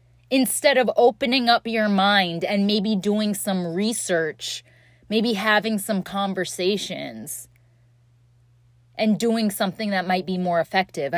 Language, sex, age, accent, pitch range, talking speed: English, female, 20-39, American, 130-215 Hz, 125 wpm